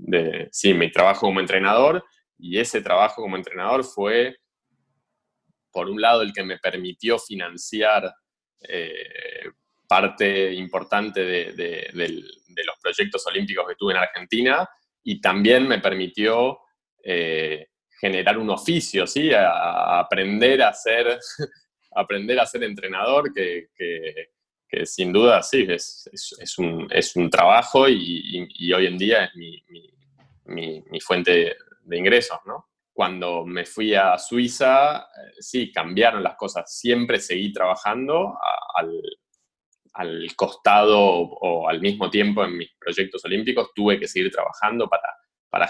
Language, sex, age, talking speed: Spanish, male, 20-39, 140 wpm